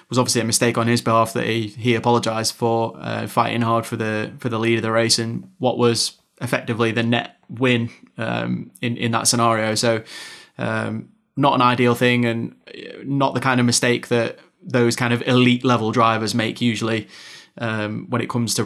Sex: male